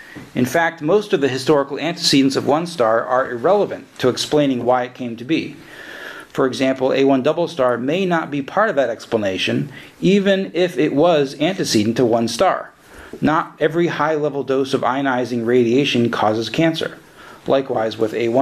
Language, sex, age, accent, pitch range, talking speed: English, male, 40-59, American, 130-165 Hz, 165 wpm